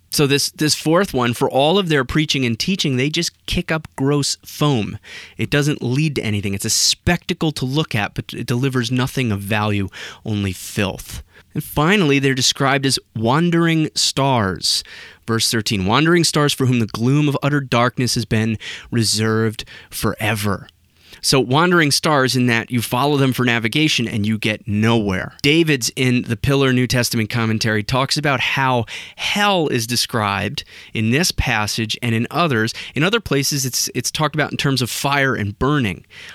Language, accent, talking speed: English, American, 175 wpm